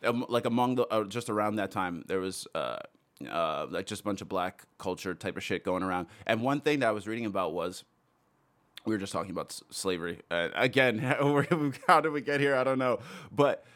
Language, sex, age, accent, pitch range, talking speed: English, male, 20-39, American, 100-120 Hz, 225 wpm